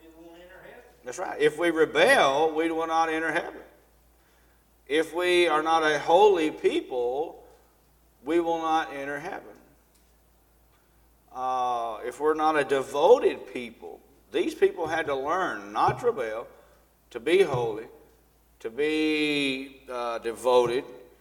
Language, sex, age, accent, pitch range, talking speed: English, male, 50-69, American, 125-170 Hz, 125 wpm